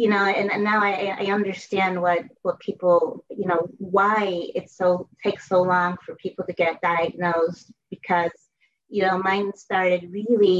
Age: 30-49